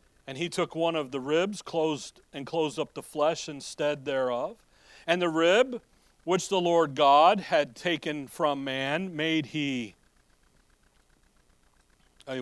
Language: English